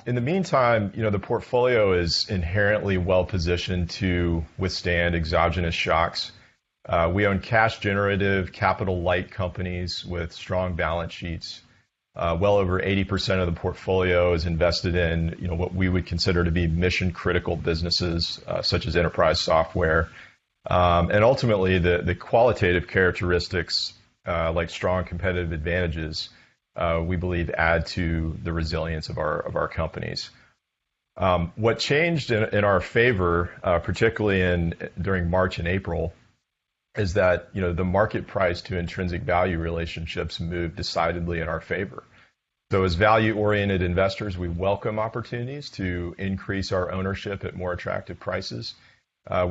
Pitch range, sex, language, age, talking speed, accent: 85-95 Hz, male, English, 30-49, 145 wpm, American